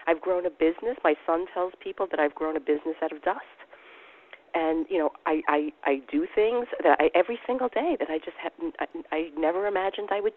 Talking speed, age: 220 wpm, 40-59